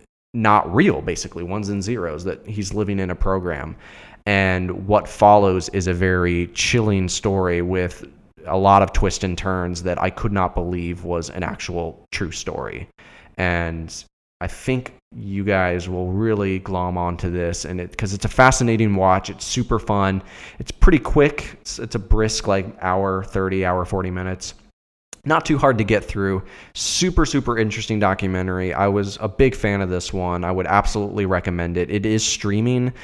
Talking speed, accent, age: 175 wpm, American, 20-39